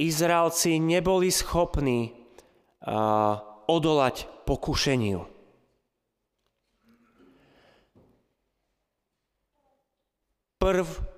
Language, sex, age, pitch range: Slovak, male, 30-49, 120-170 Hz